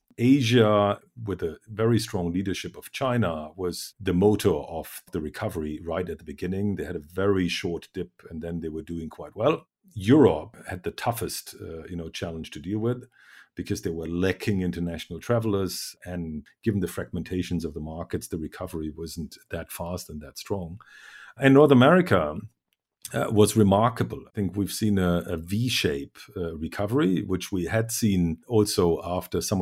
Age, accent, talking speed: 50-69, German, 170 wpm